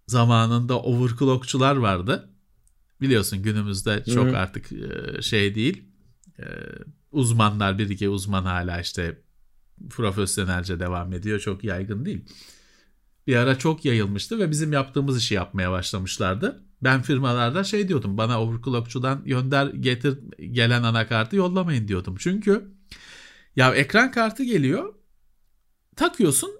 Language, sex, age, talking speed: Turkish, male, 40-59, 110 wpm